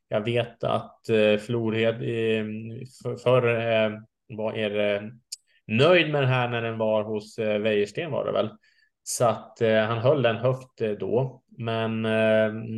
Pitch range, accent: 105-120 Hz, Norwegian